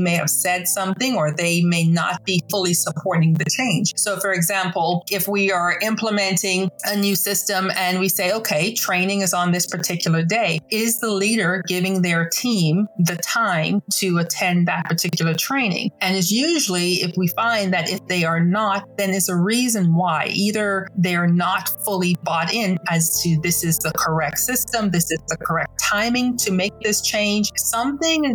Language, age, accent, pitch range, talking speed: English, 40-59, American, 170-205 Hz, 180 wpm